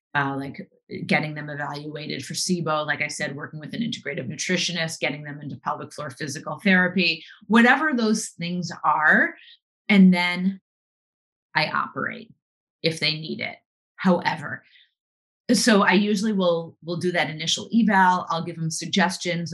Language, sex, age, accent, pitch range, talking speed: English, female, 30-49, American, 160-195 Hz, 145 wpm